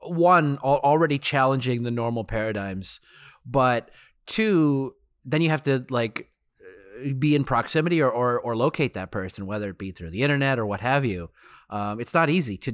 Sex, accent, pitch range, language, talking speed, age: male, American, 110-135 Hz, English, 175 wpm, 30-49